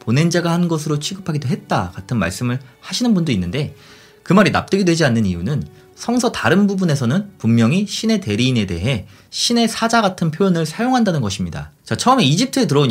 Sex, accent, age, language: male, native, 30-49, Korean